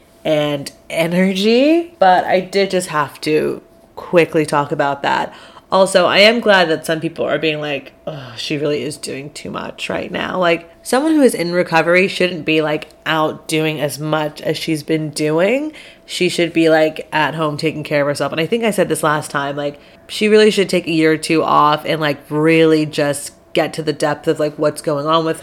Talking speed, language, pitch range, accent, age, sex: 210 wpm, English, 150-170 Hz, American, 30-49, female